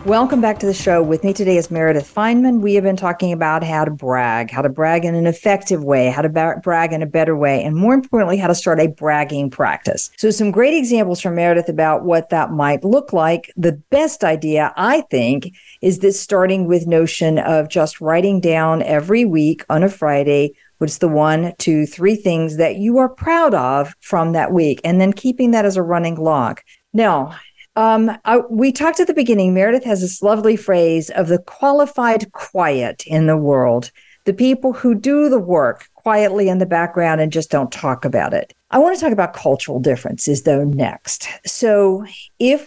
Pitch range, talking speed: 155-205 Hz, 200 wpm